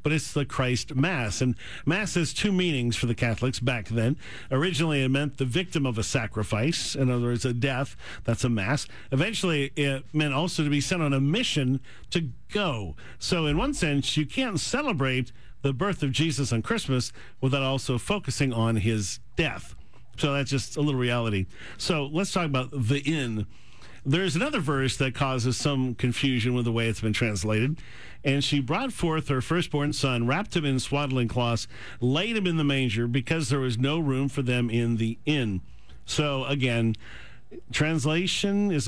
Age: 50-69